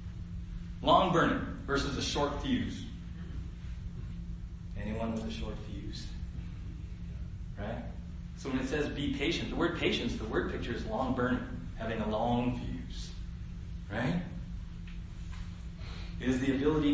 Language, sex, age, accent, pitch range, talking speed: English, male, 30-49, American, 85-120 Hz, 130 wpm